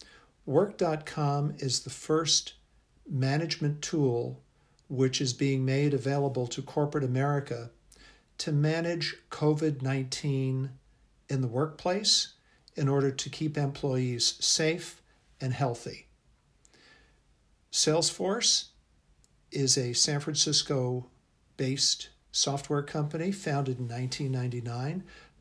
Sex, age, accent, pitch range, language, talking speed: male, 50-69, American, 130-155 Hz, English, 90 wpm